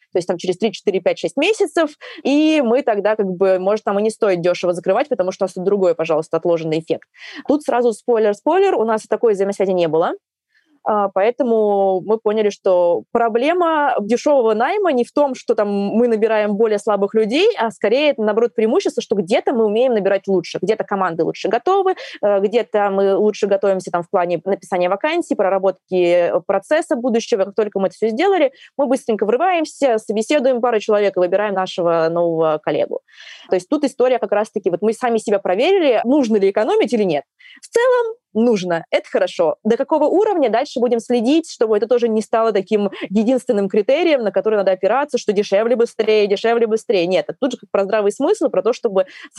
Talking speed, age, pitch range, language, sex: 185 wpm, 20-39, 195-270 Hz, Russian, female